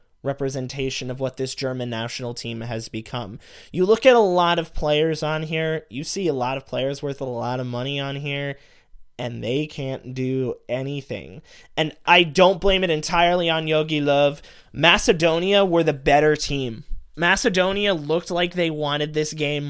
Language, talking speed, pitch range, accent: English, 175 wpm, 135-180 Hz, American